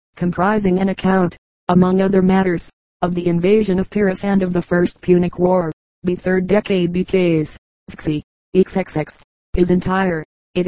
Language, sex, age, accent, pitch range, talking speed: English, female, 30-49, American, 175-195 Hz, 145 wpm